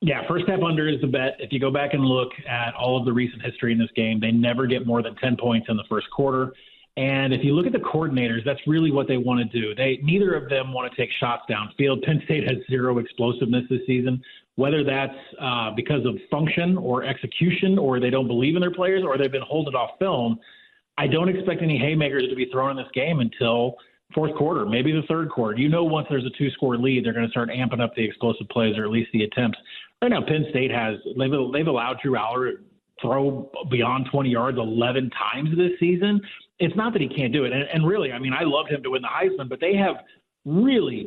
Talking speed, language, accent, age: 240 wpm, English, American, 30-49